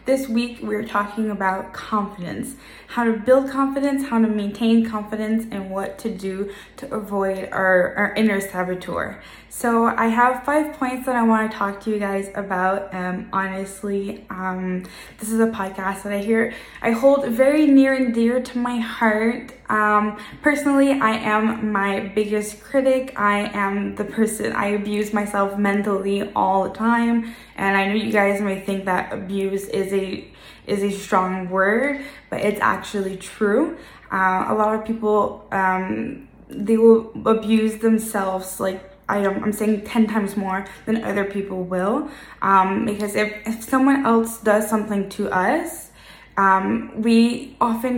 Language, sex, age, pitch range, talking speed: English, female, 10-29, 195-230 Hz, 165 wpm